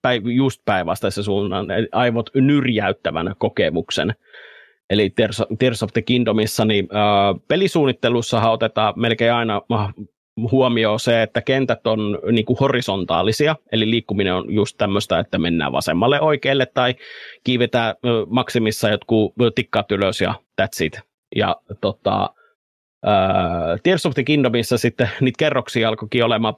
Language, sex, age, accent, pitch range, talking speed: Finnish, male, 30-49, native, 110-130 Hz, 120 wpm